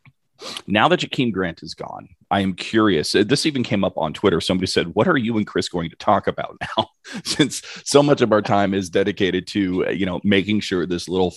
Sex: male